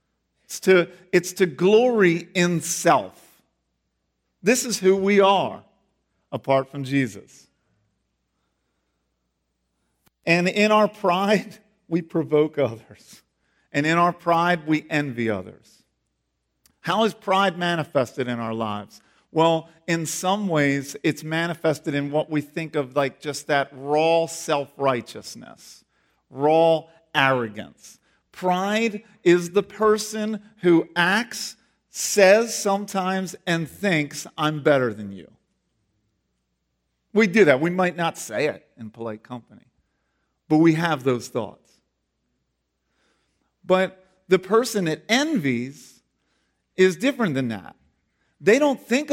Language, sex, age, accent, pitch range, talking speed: English, male, 50-69, American, 135-190 Hz, 120 wpm